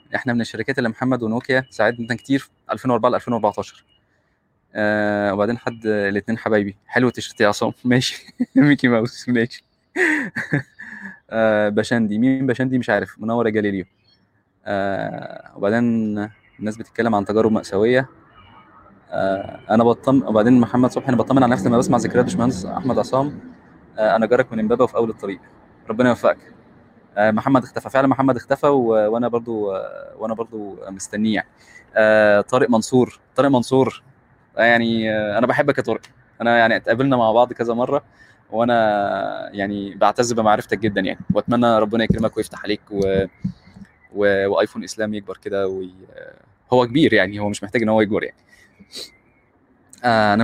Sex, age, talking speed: male, 20-39, 145 wpm